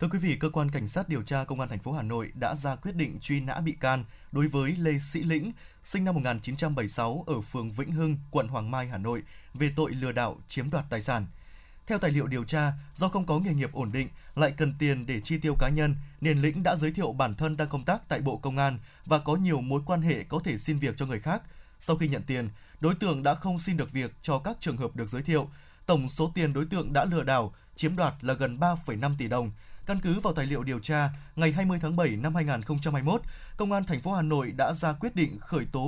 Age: 20-39